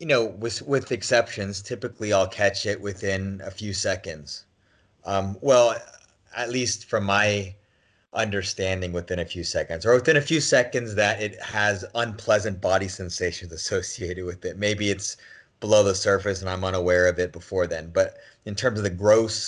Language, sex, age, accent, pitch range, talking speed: English, male, 30-49, American, 95-115 Hz, 175 wpm